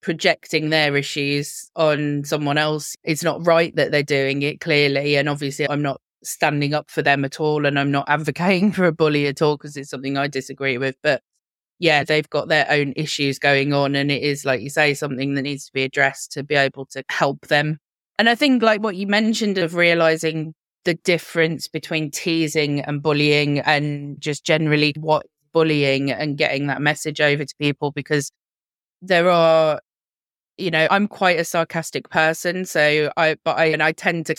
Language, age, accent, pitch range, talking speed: English, 20-39, British, 145-160 Hz, 195 wpm